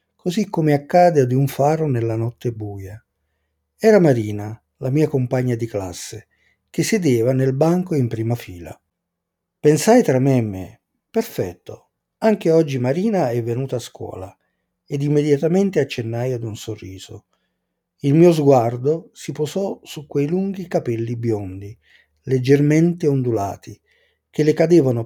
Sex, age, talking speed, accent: male, 50-69, 135 wpm, native